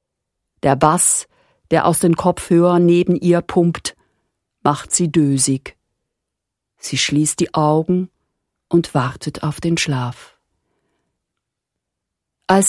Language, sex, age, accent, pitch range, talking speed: German, female, 50-69, German, 145-185 Hz, 105 wpm